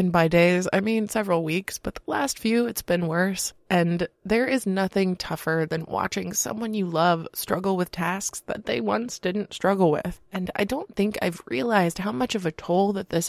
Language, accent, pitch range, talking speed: English, American, 175-210 Hz, 205 wpm